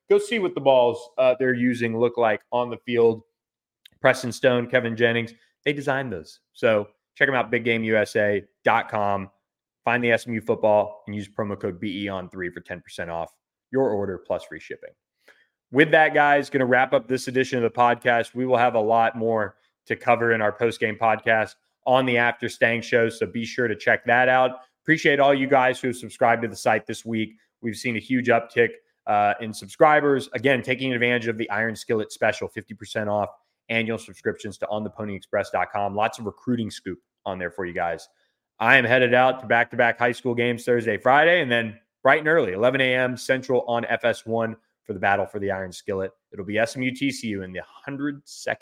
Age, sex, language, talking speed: 20-39, male, English, 190 wpm